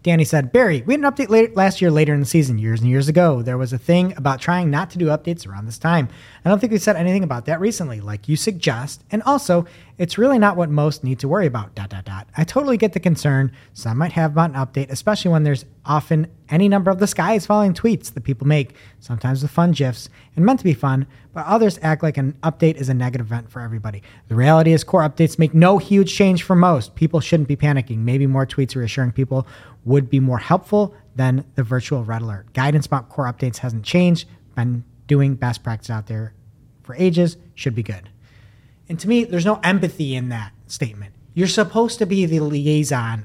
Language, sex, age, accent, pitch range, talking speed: English, male, 30-49, American, 125-185 Hz, 230 wpm